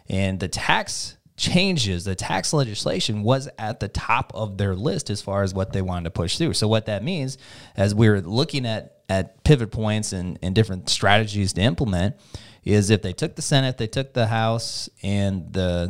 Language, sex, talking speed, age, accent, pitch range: English, male, 195 wpm, 20-39, American, 95-120 Hz